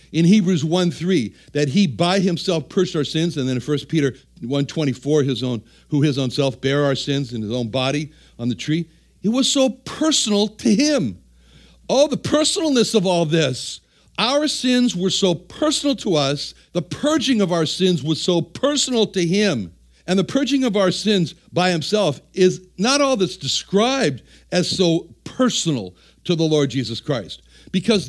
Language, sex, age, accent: English, male, 60-79, American